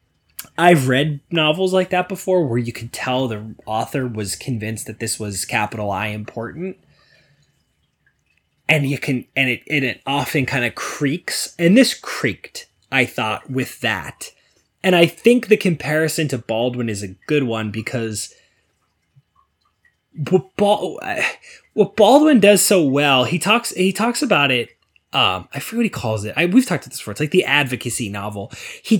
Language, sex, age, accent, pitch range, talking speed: English, male, 20-39, American, 115-185 Hz, 170 wpm